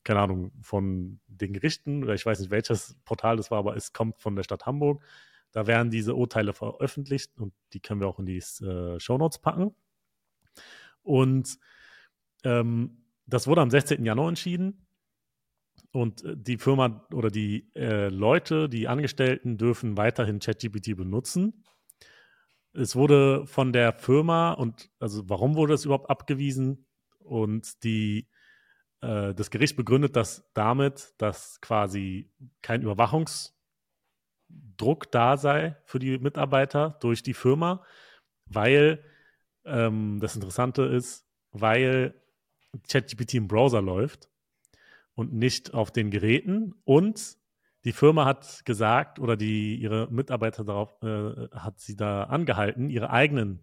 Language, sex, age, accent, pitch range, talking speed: German, male, 30-49, German, 105-140 Hz, 135 wpm